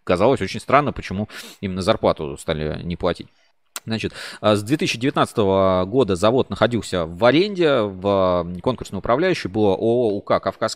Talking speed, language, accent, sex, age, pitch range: 130 wpm, Russian, native, male, 20-39, 95-120 Hz